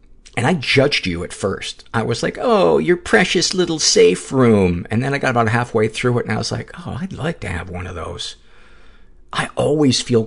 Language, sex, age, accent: English, male, 50-69, American